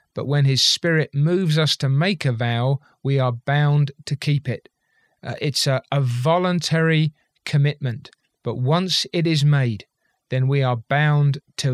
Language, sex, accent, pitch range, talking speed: English, male, British, 130-160 Hz, 165 wpm